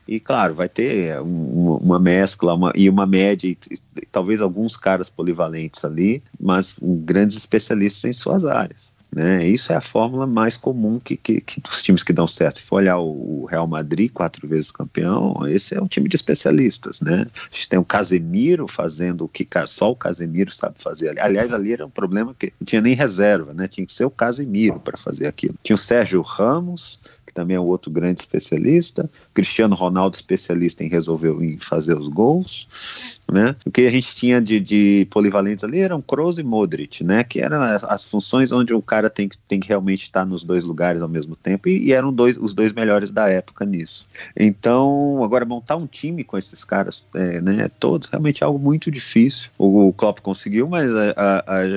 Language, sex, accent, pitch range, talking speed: Portuguese, male, Brazilian, 90-120 Hz, 205 wpm